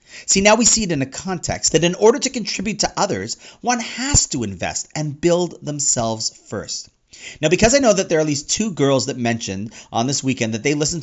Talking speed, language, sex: 230 wpm, English, male